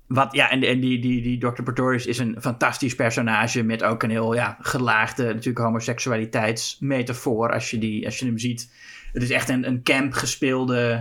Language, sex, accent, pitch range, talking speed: Dutch, male, Dutch, 115-135 Hz, 180 wpm